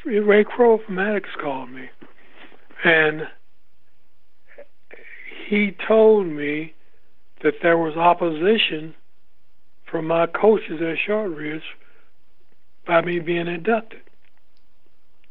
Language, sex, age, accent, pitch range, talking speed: English, male, 60-79, American, 155-200 Hz, 90 wpm